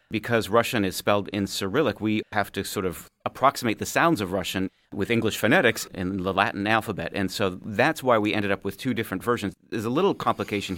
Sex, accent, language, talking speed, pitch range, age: male, American, English, 210 wpm, 95-115 Hz, 40-59